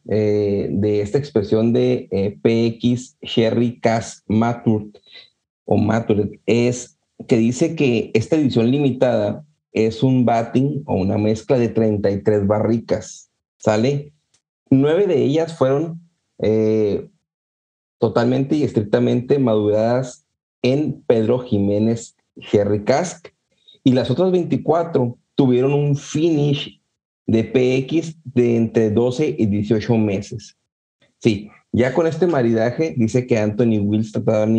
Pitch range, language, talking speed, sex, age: 110-140 Hz, Spanish, 120 wpm, male, 40-59